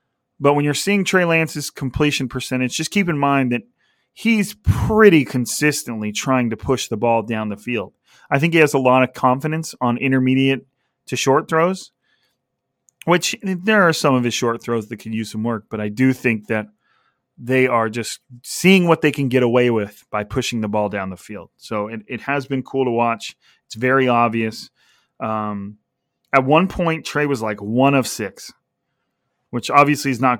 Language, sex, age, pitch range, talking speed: English, male, 30-49, 120-145 Hz, 190 wpm